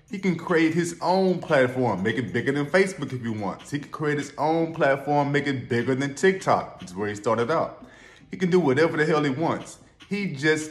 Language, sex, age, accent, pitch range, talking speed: English, male, 20-39, American, 125-155 Hz, 225 wpm